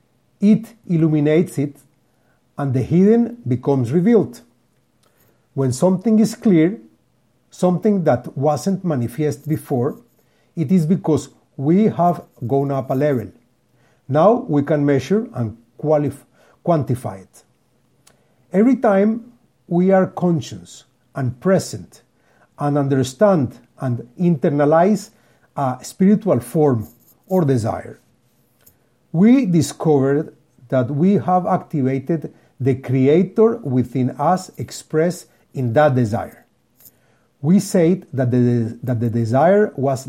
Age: 50-69